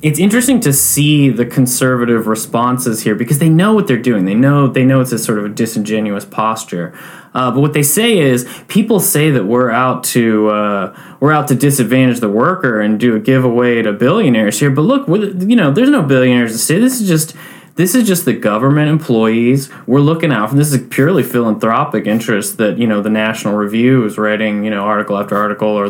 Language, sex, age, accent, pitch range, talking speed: English, male, 20-39, American, 110-150 Hz, 220 wpm